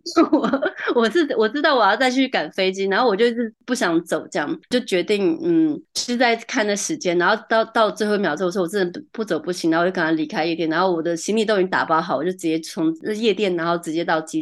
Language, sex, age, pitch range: Chinese, female, 20-39, 170-235 Hz